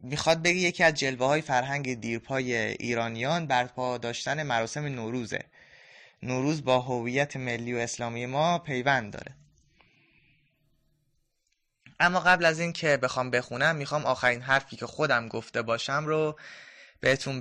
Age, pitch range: 20-39, 120-150 Hz